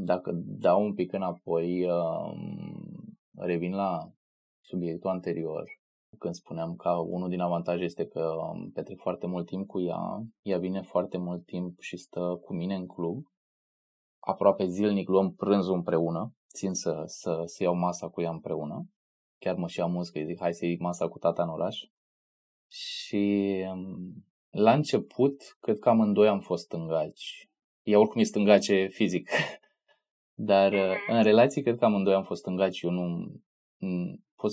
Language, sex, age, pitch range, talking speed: Romanian, male, 20-39, 85-100 Hz, 155 wpm